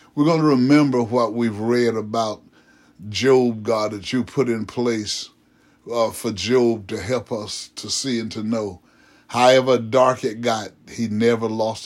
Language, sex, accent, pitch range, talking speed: English, male, American, 110-125 Hz, 165 wpm